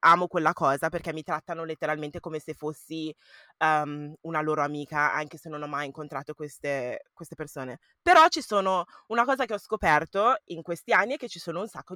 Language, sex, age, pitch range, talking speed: Italian, female, 20-39, 160-220 Hz, 200 wpm